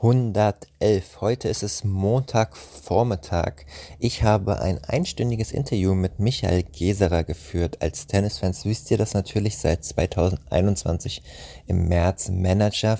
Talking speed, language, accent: 115 wpm, German, German